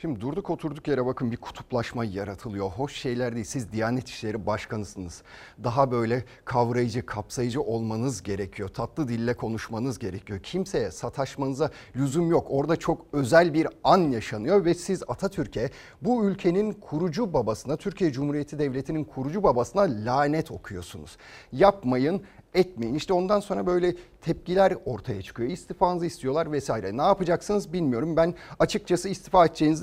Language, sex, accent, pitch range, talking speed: Turkish, male, native, 115-175 Hz, 135 wpm